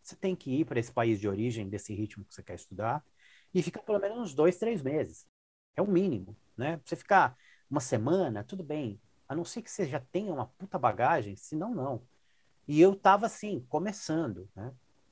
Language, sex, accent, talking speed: Portuguese, male, Brazilian, 200 wpm